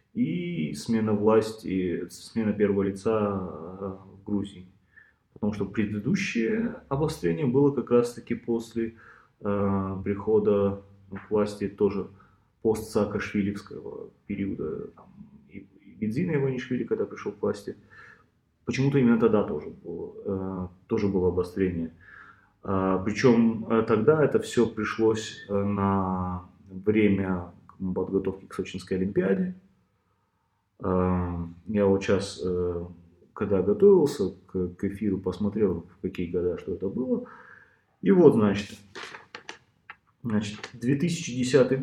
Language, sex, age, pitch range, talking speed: Russian, male, 20-39, 95-115 Hz, 100 wpm